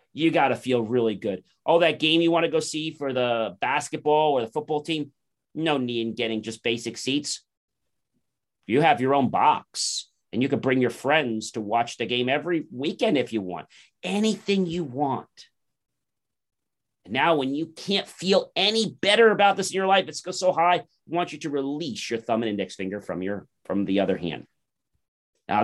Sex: male